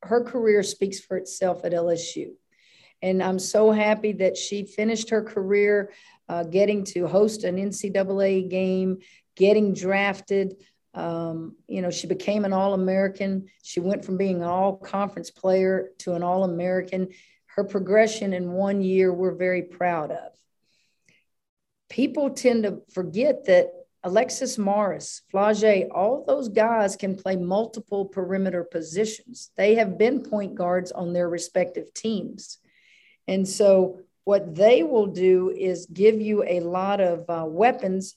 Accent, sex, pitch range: American, female, 185-215 Hz